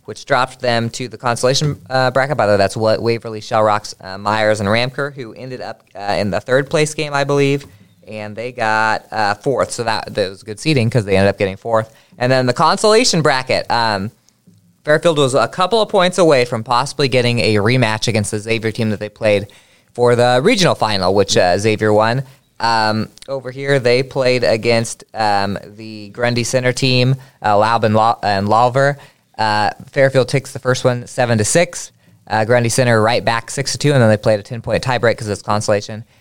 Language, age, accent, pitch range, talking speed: English, 20-39, American, 105-130 Hz, 210 wpm